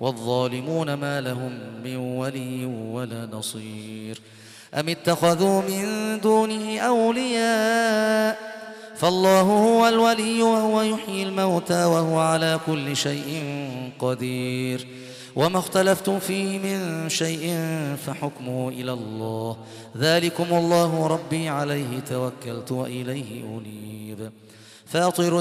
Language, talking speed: Arabic, 90 wpm